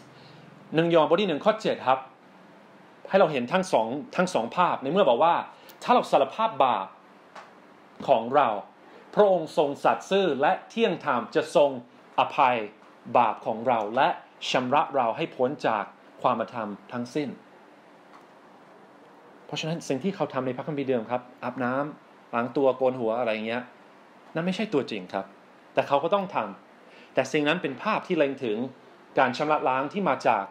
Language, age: English, 30-49